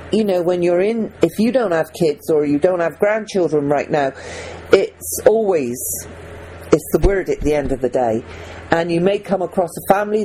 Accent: British